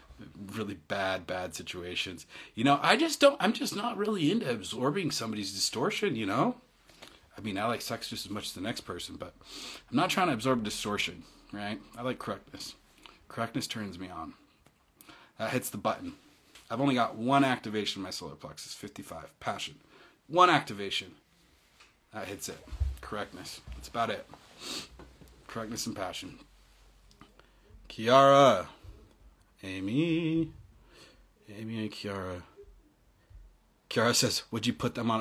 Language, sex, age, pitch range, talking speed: English, male, 30-49, 95-140 Hz, 145 wpm